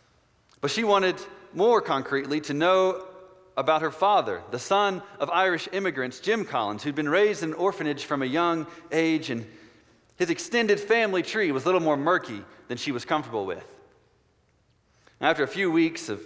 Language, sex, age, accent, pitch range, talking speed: English, male, 30-49, American, 145-195 Hz, 170 wpm